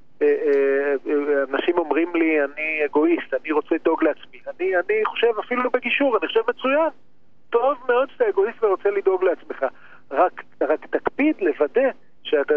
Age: 40-59